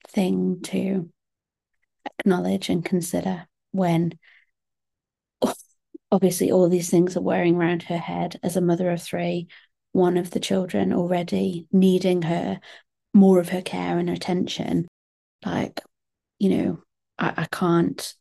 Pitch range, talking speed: 175-200 Hz, 130 wpm